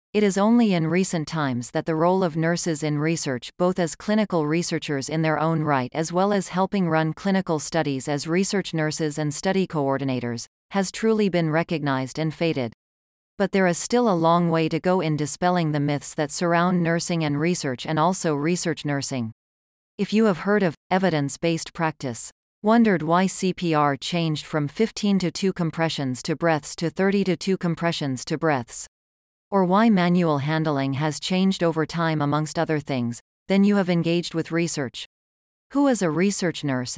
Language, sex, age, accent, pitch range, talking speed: English, female, 40-59, American, 150-185 Hz, 175 wpm